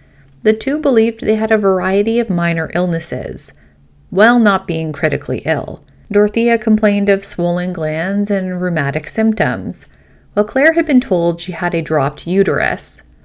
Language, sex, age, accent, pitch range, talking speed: English, female, 30-49, American, 165-215 Hz, 150 wpm